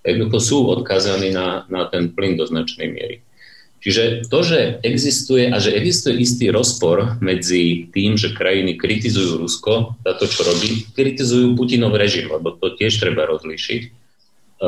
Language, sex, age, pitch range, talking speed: Slovak, male, 40-59, 90-120 Hz, 150 wpm